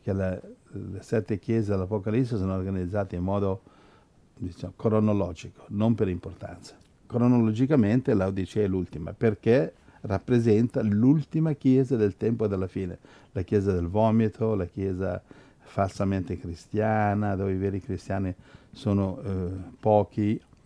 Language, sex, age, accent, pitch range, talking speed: Italian, male, 60-79, native, 95-110 Hz, 125 wpm